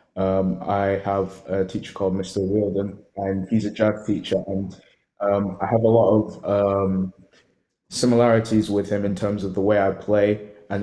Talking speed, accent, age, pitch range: 175 wpm, British, 20-39, 95-110 Hz